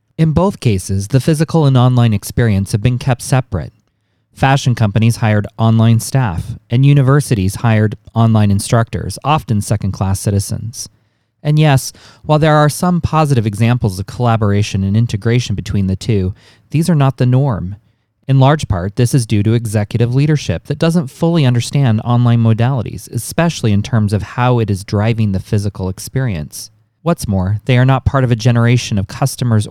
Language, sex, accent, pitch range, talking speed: English, male, American, 105-130 Hz, 165 wpm